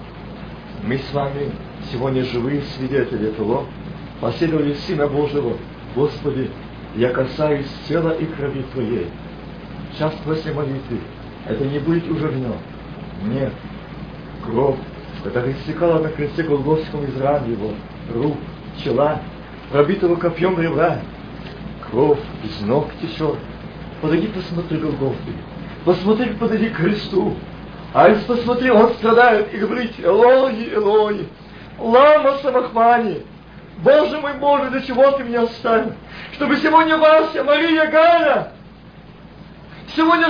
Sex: male